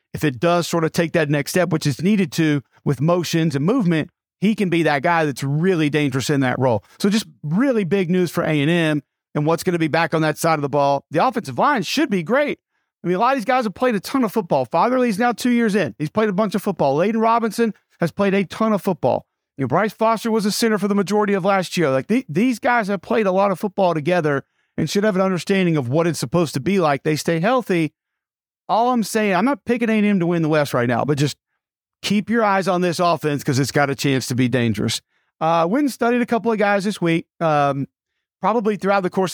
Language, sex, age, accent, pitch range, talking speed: English, male, 40-59, American, 150-200 Hz, 260 wpm